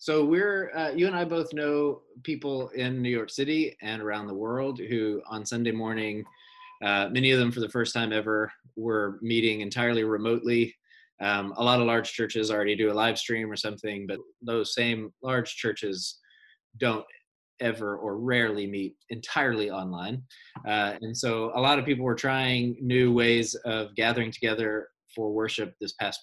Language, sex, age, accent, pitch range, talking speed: English, male, 20-39, American, 105-125 Hz, 175 wpm